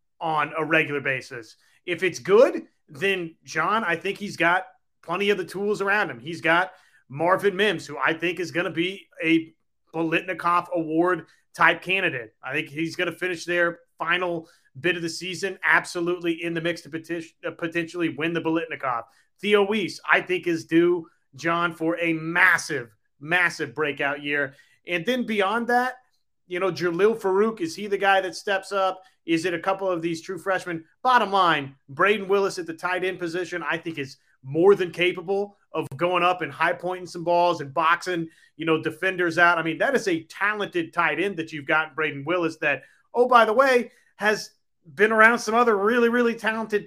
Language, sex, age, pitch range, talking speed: English, male, 30-49, 160-195 Hz, 190 wpm